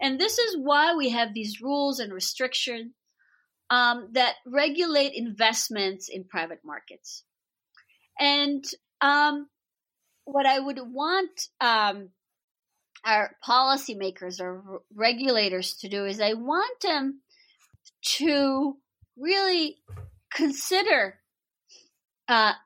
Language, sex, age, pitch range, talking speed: English, female, 30-49, 190-290 Hz, 105 wpm